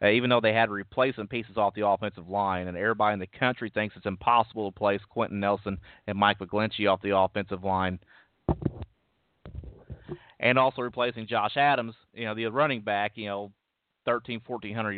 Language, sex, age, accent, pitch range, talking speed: English, male, 30-49, American, 100-120 Hz, 170 wpm